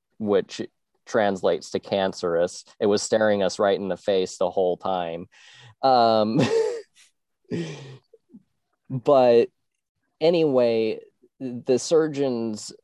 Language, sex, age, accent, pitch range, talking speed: English, male, 20-39, American, 95-120 Hz, 95 wpm